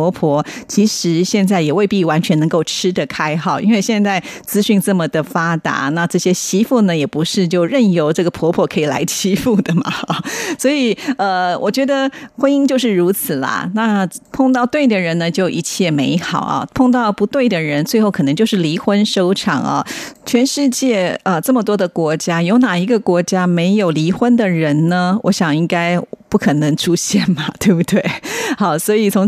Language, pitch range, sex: Japanese, 165-215 Hz, female